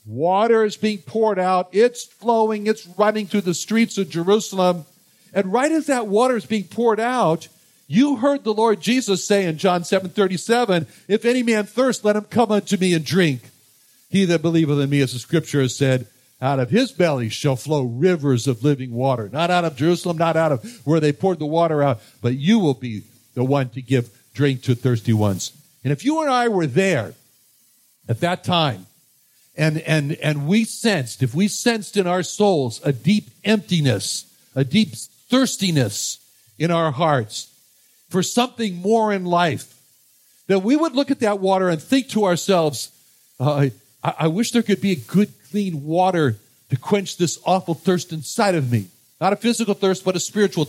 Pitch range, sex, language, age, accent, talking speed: 140-210 Hz, male, English, 60-79, American, 190 wpm